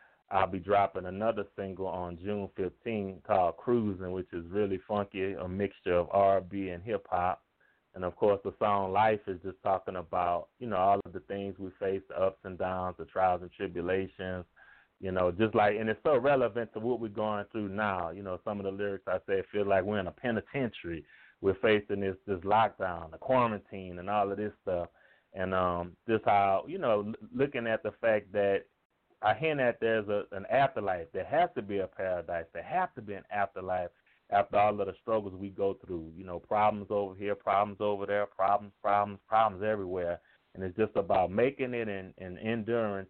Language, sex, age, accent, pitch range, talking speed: English, male, 30-49, American, 95-105 Hz, 200 wpm